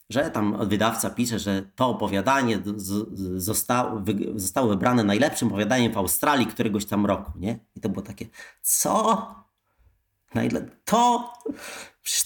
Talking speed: 130 wpm